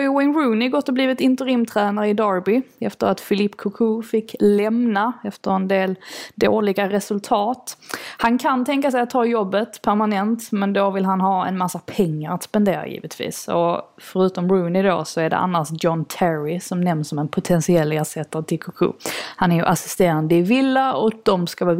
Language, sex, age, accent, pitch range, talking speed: Swedish, female, 20-39, native, 175-225 Hz, 180 wpm